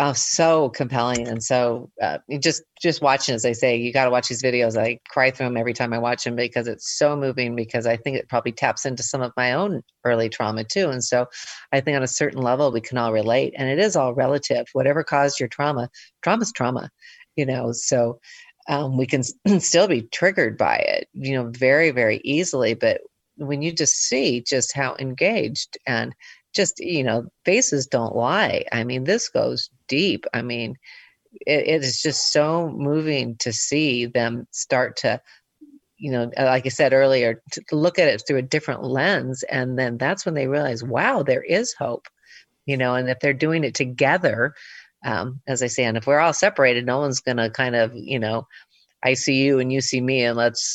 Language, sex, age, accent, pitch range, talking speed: English, female, 40-59, American, 120-145 Hz, 210 wpm